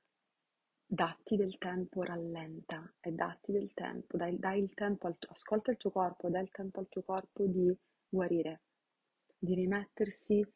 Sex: female